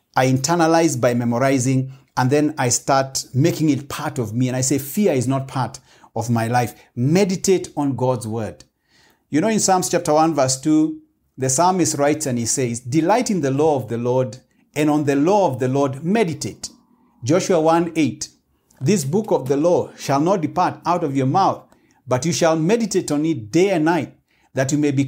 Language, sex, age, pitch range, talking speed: English, male, 50-69, 130-165 Hz, 200 wpm